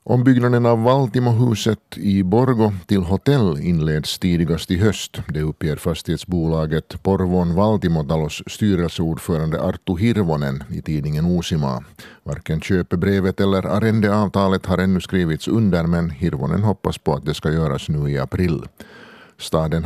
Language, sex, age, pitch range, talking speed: Swedish, male, 50-69, 80-100 Hz, 125 wpm